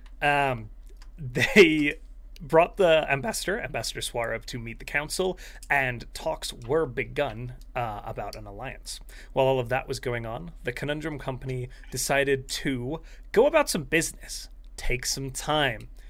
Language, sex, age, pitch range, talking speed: English, male, 30-49, 125-155 Hz, 140 wpm